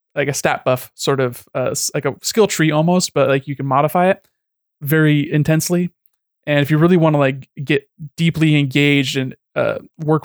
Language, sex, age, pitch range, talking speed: English, male, 20-39, 130-150 Hz, 195 wpm